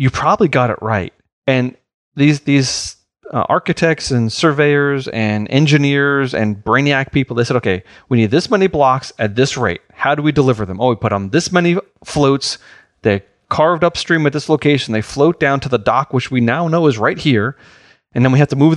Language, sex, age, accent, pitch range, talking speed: English, male, 30-49, American, 120-155 Hz, 210 wpm